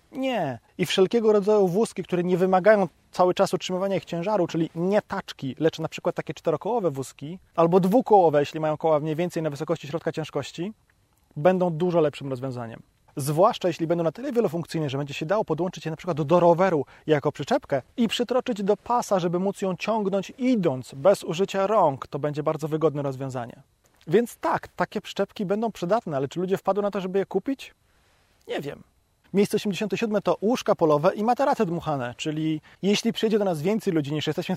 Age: 20-39